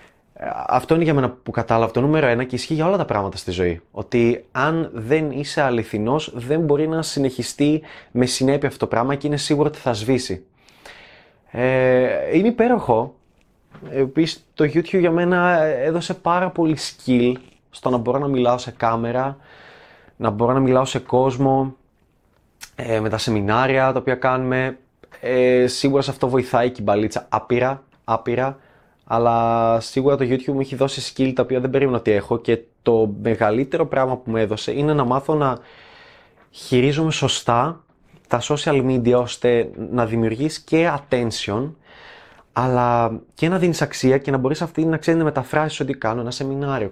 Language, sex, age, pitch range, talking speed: Greek, male, 20-39, 120-145 Hz, 165 wpm